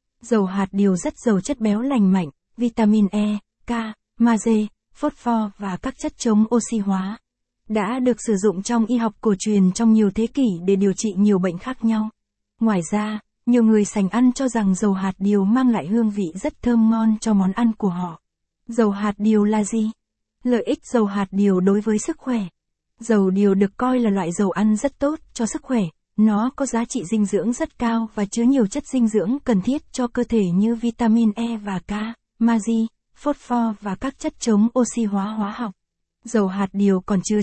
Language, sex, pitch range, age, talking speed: Vietnamese, female, 200-235 Hz, 20-39, 210 wpm